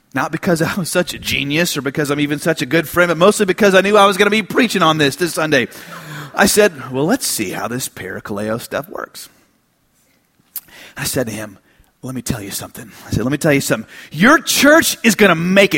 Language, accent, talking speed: English, American, 230 wpm